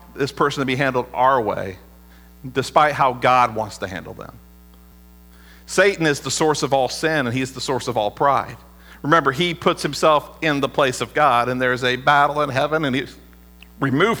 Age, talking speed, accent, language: 50-69, 195 wpm, American, English